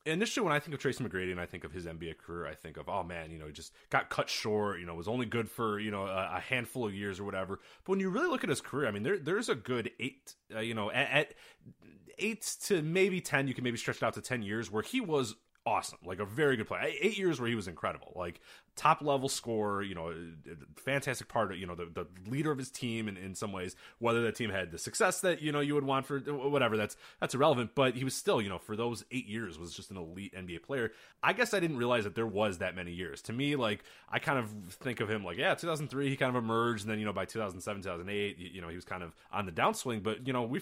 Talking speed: 280 wpm